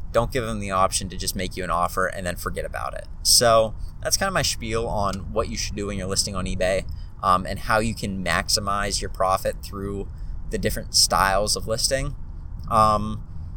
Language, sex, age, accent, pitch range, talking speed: English, male, 20-39, American, 90-115 Hz, 210 wpm